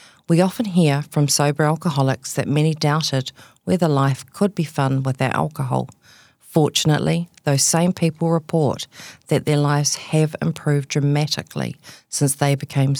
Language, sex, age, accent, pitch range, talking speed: English, female, 40-59, Australian, 135-160 Hz, 140 wpm